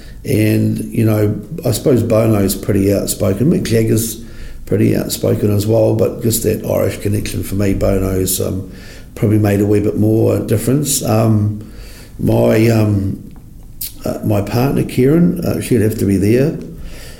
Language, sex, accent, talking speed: English, male, Australian, 150 wpm